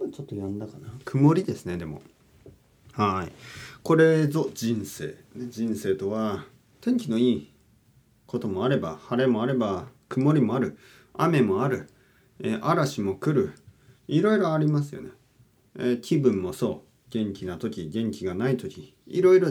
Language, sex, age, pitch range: Japanese, male, 40-59, 100-150 Hz